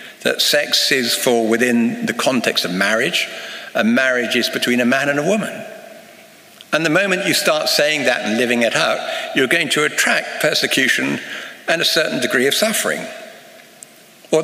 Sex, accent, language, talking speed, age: male, British, English, 170 wpm, 60-79